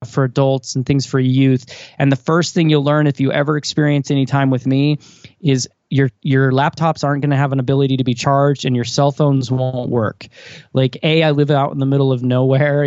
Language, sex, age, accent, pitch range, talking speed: English, male, 20-39, American, 135-160 Hz, 230 wpm